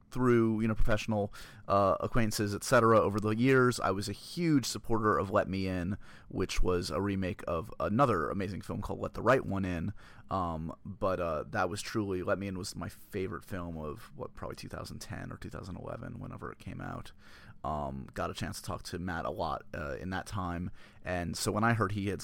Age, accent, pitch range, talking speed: 30-49, American, 95-115 Hz, 210 wpm